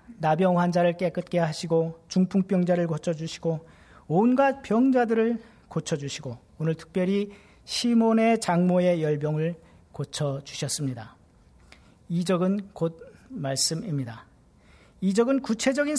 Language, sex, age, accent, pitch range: Korean, male, 40-59, native, 150-215 Hz